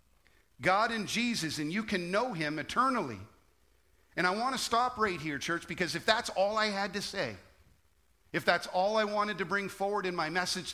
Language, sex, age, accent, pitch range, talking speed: English, male, 50-69, American, 155-210 Hz, 200 wpm